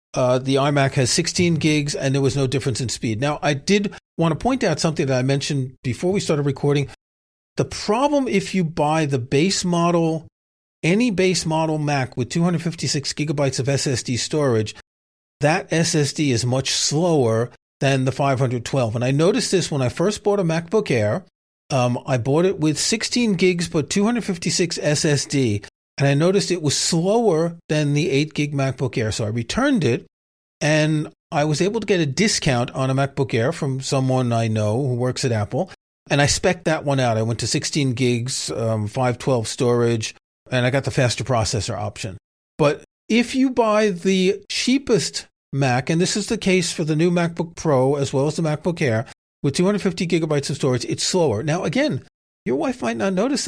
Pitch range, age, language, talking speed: 130-175 Hz, 40-59, English, 190 wpm